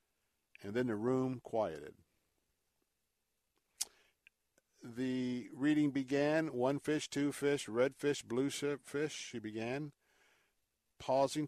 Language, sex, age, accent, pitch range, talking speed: English, male, 50-69, American, 115-145 Hz, 100 wpm